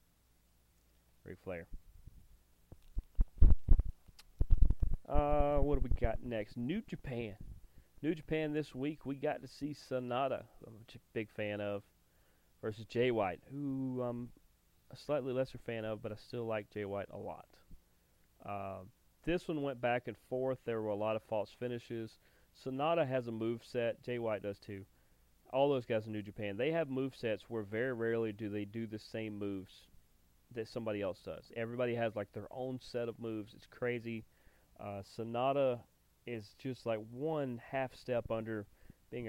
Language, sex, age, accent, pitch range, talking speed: English, male, 30-49, American, 100-125 Hz, 165 wpm